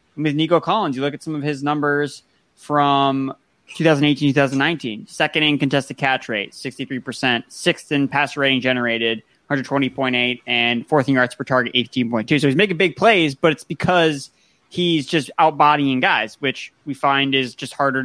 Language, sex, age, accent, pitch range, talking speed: English, male, 20-39, American, 130-150 Hz, 165 wpm